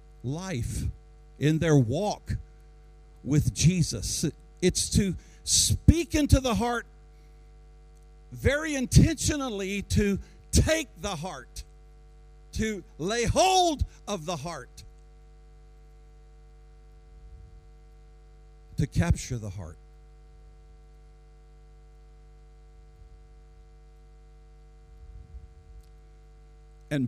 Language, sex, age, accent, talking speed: English, male, 50-69, American, 65 wpm